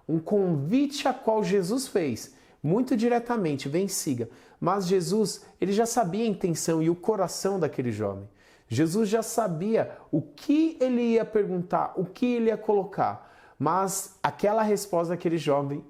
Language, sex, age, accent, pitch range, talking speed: Portuguese, male, 30-49, Brazilian, 160-205 Hz, 150 wpm